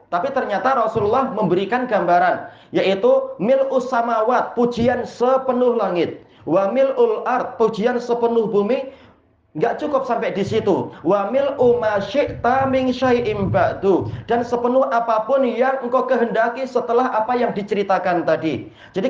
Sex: male